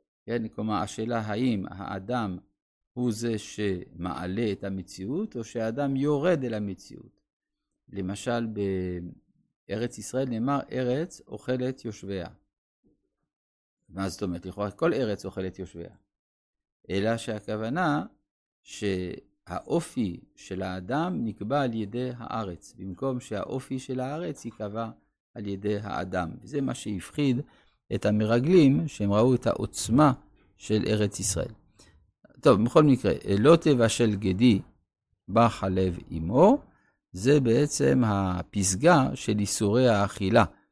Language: Hebrew